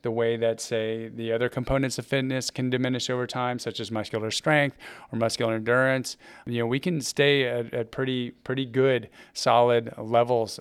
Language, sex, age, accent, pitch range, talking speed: English, male, 30-49, American, 115-135 Hz, 180 wpm